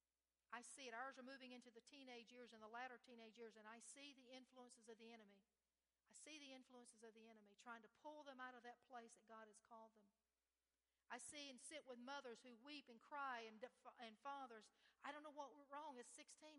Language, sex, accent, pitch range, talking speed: English, female, American, 225-280 Hz, 235 wpm